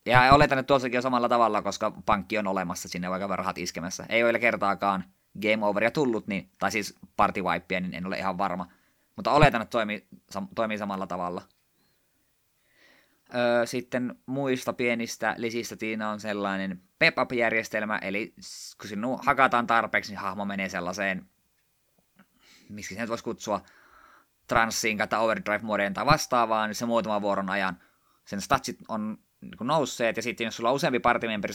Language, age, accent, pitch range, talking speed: Finnish, 20-39, native, 100-120 Hz, 160 wpm